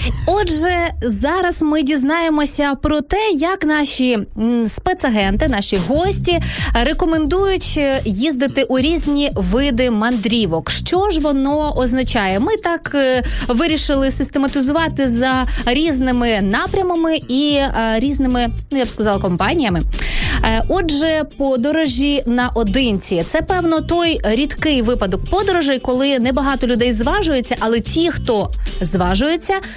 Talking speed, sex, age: 105 wpm, female, 20-39